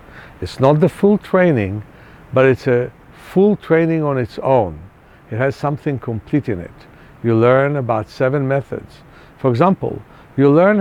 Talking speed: 155 wpm